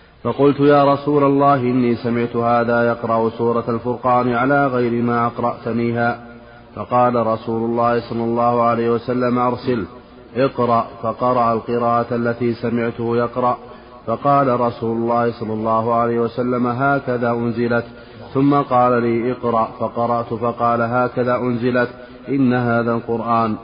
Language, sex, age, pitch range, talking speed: Arabic, male, 30-49, 115-125 Hz, 120 wpm